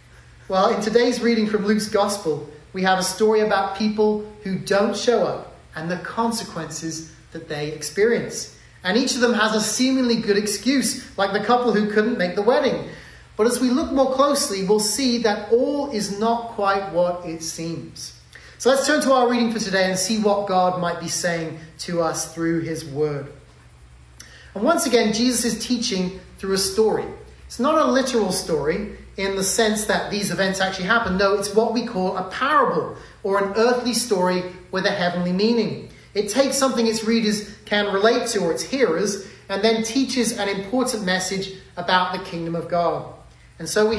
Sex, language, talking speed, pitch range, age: male, English, 190 wpm, 180-235 Hz, 30-49